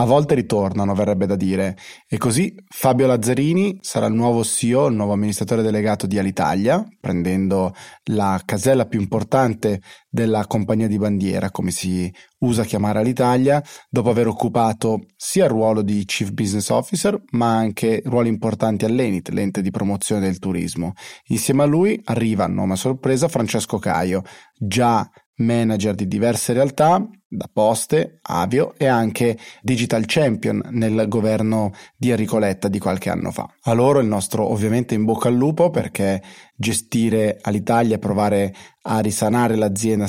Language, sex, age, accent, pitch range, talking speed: Italian, male, 30-49, native, 100-120 Hz, 150 wpm